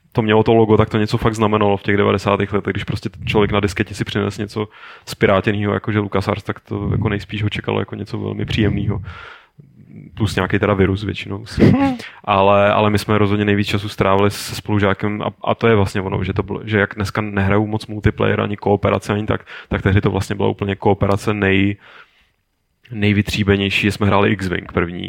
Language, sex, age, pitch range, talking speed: Czech, male, 20-39, 100-110 Hz, 200 wpm